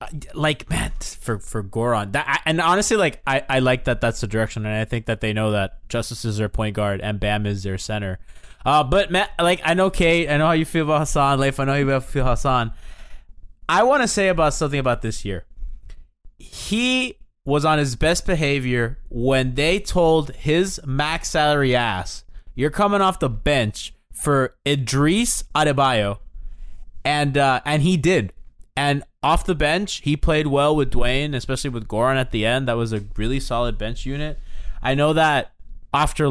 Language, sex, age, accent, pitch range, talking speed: English, male, 20-39, American, 115-150 Hz, 190 wpm